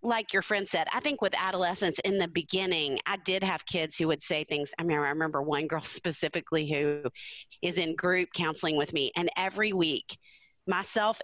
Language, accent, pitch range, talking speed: English, American, 165-210 Hz, 200 wpm